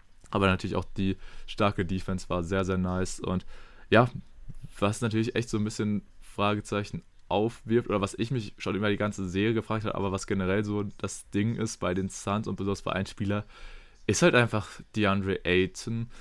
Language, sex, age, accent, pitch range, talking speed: German, male, 20-39, German, 95-115 Hz, 190 wpm